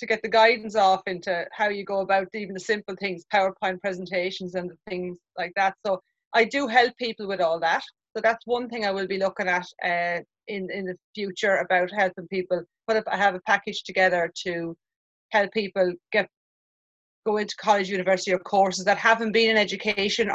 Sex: female